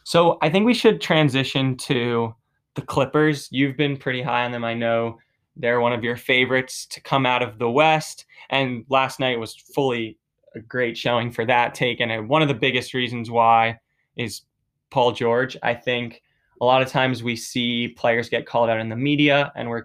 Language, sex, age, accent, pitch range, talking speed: English, male, 20-39, American, 120-140 Hz, 200 wpm